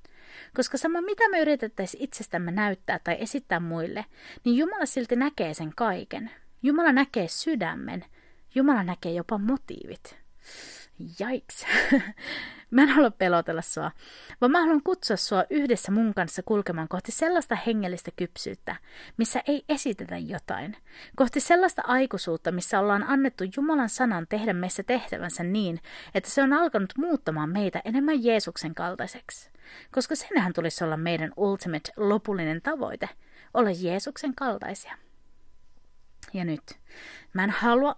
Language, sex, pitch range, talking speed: Finnish, female, 175-255 Hz, 135 wpm